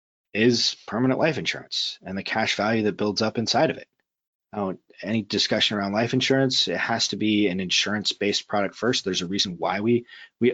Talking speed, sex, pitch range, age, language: 200 wpm, male, 100-125 Hz, 30-49, English